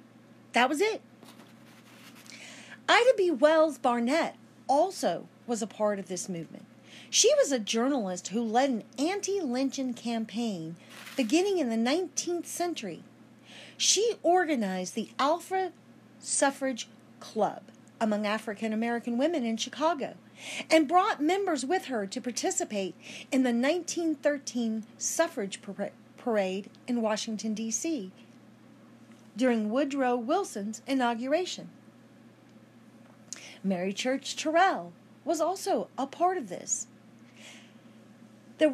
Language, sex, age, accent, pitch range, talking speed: English, female, 40-59, American, 210-315 Hz, 105 wpm